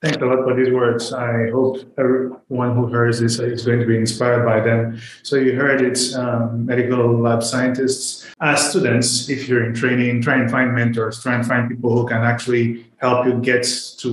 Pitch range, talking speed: 115-125 Hz, 205 wpm